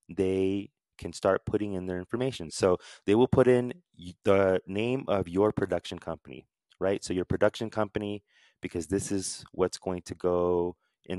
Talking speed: 165 wpm